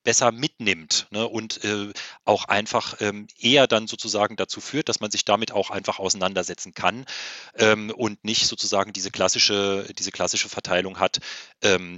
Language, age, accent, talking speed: German, 30-49, German, 160 wpm